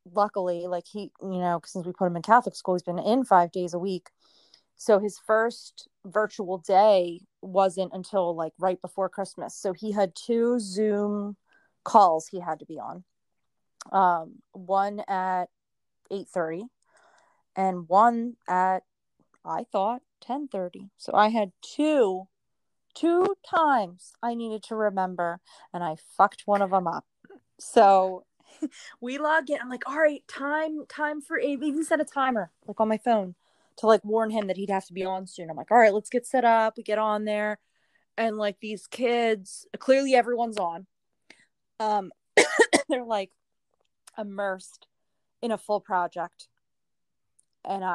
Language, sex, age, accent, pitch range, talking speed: English, female, 30-49, American, 185-235 Hz, 160 wpm